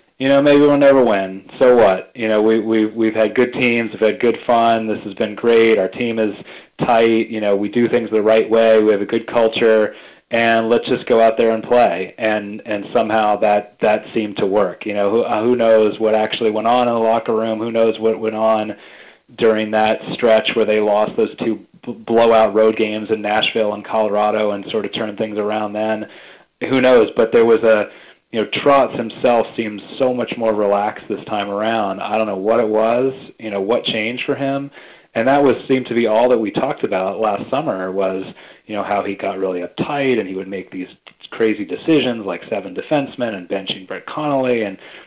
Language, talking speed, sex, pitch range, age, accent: English, 215 wpm, male, 105-120 Hz, 30-49, American